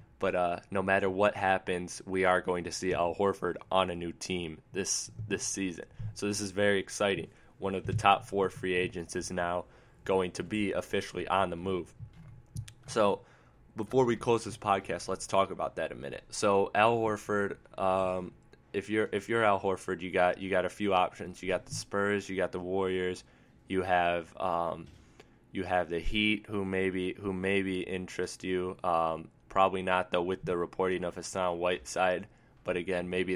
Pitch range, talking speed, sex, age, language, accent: 90-100 Hz, 185 wpm, male, 20-39, English, American